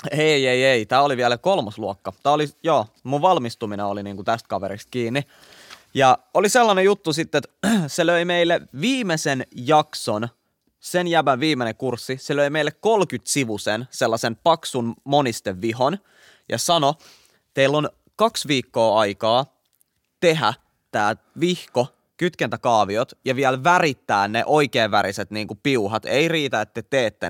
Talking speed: 140 wpm